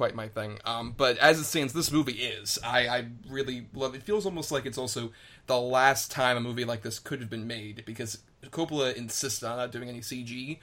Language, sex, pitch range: English, male, 110-130 Hz